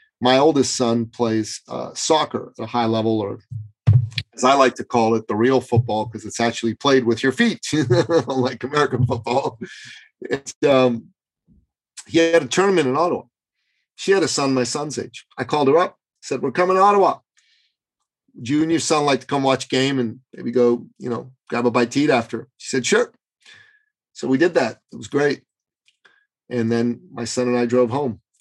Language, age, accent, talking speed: English, 40-59, American, 200 wpm